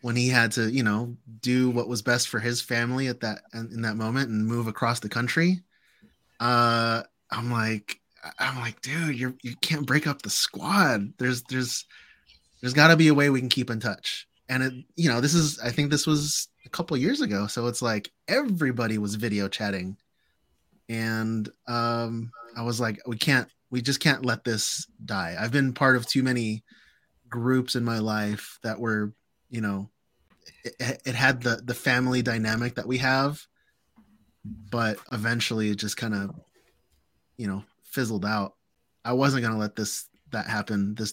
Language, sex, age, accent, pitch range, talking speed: English, male, 20-39, American, 110-130 Hz, 180 wpm